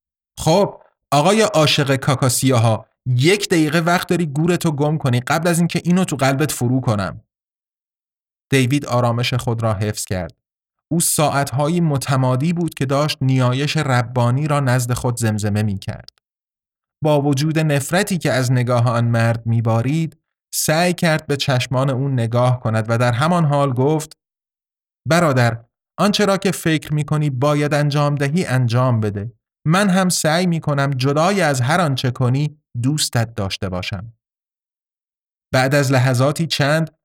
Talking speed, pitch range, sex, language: 140 wpm, 120-155 Hz, male, Persian